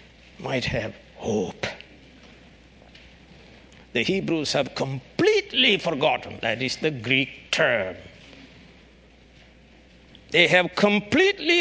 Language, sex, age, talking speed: English, male, 60-79, 85 wpm